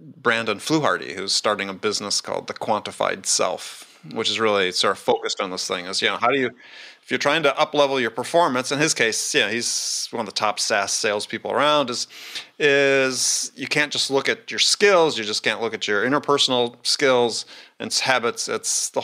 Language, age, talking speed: English, 30-49, 210 wpm